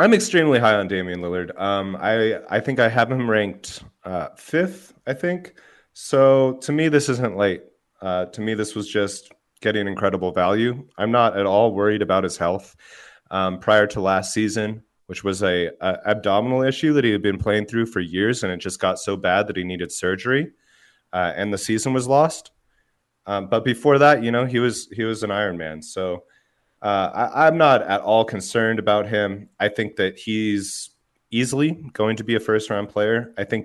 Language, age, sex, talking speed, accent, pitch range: English, 30-49, male, 200 wpm, American, 100-130 Hz